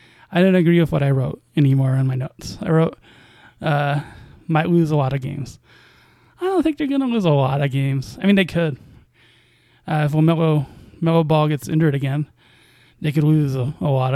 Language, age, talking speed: English, 20-39, 205 wpm